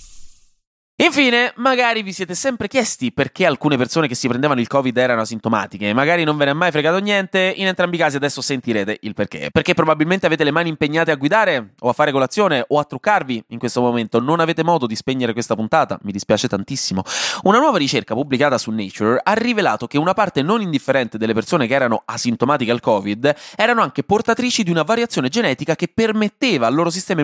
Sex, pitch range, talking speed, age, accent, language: male, 125-195 Hz, 205 wpm, 20-39, native, Italian